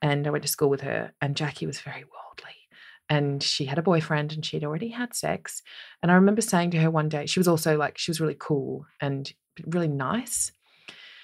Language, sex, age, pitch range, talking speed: English, female, 20-39, 145-185 Hz, 220 wpm